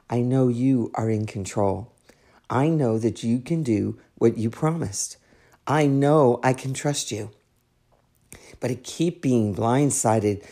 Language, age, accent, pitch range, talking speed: English, 50-69, American, 115-145 Hz, 150 wpm